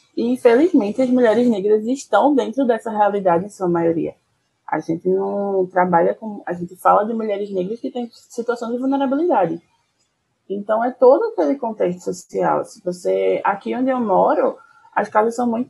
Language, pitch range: Portuguese, 180-235 Hz